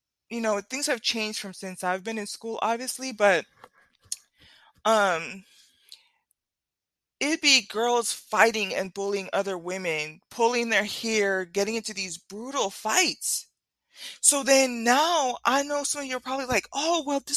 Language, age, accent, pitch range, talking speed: English, 20-39, American, 195-245 Hz, 150 wpm